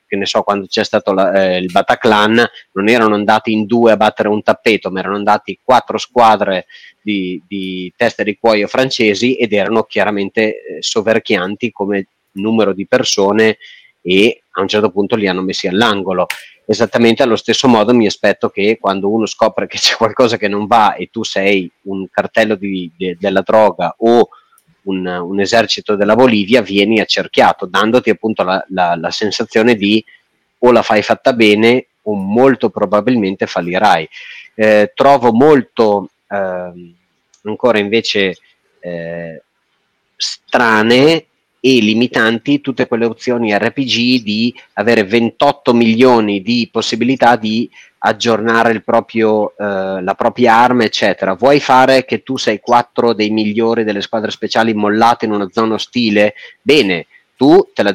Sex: male